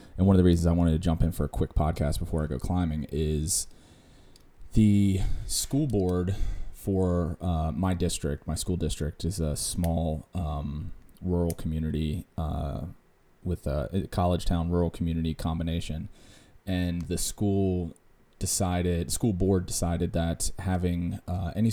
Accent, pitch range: American, 80-95 Hz